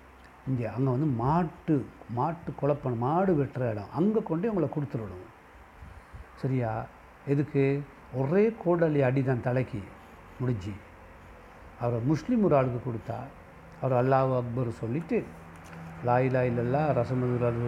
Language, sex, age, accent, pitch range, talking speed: Tamil, male, 60-79, native, 100-140 Hz, 105 wpm